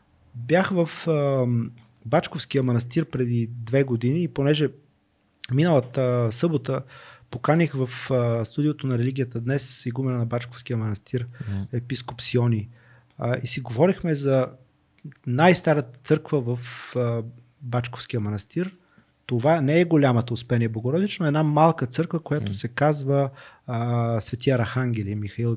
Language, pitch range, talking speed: Bulgarian, 120-150 Hz, 115 wpm